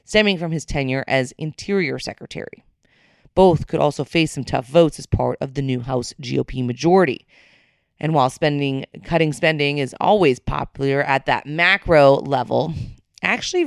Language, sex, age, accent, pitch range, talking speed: English, female, 30-49, American, 135-155 Hz, 155 wpm